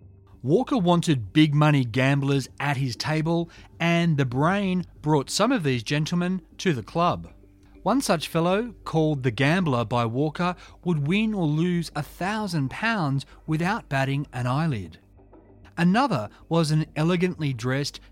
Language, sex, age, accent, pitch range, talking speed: English, male, 40-59, Australian, 130-185 Hz, 140 wpm